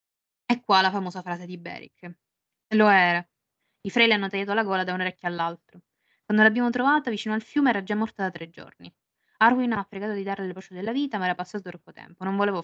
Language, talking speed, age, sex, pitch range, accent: Italian, 235 wpm, 20-39, female, 175-210 Hz, native